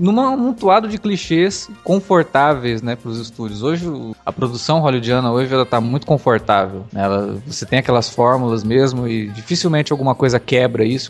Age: 20-39